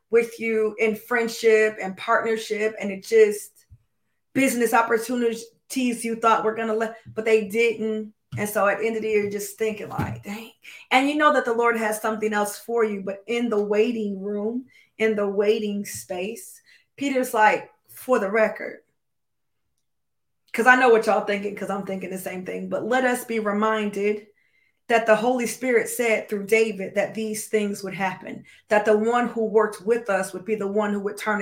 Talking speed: 190 wpm